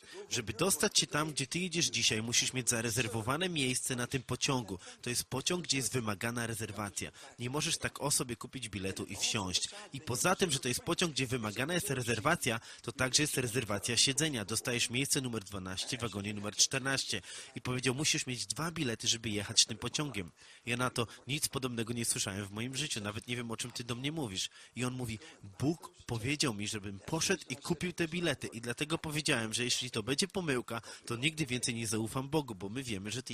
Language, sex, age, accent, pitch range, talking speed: Polish, male, 30-49, native, 115-150 Hz, 205 wpm